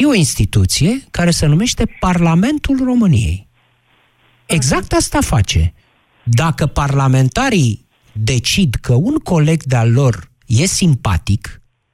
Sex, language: male, Romanian